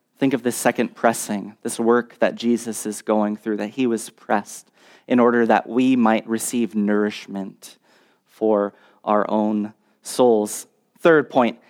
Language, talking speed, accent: English, 150 wpm, American